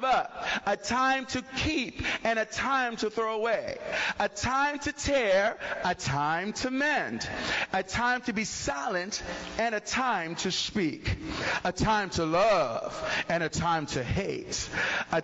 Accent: American